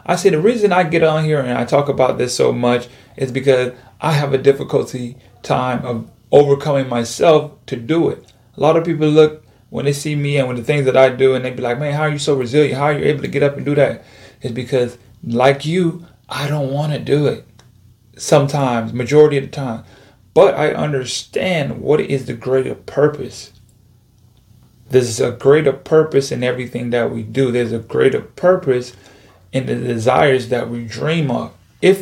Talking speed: 200 wpm